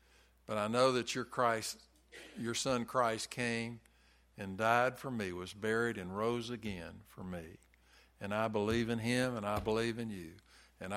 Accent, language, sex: American, English, male